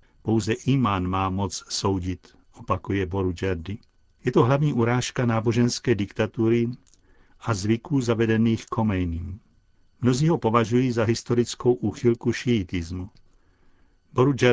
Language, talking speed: Czech, 105 wpm